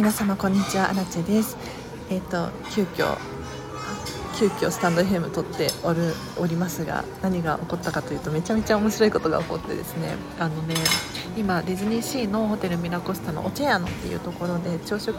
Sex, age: female, 40-59